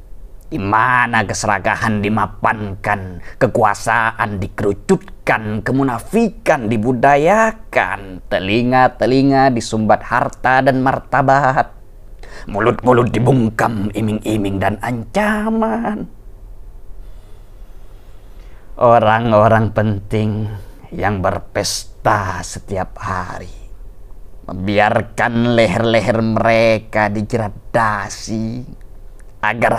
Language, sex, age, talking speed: Indonesian, male, 30-49, 60 wpm